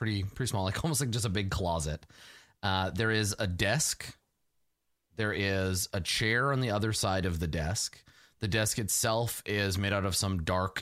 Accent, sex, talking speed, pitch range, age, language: American, male, 195 wpm, 95-125 Hz, 30-49, English